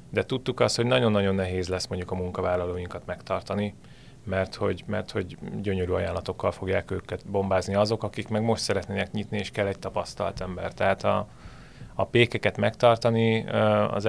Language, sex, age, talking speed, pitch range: Hungarian, male, 30-49, 160 wpm, 95-110 Hz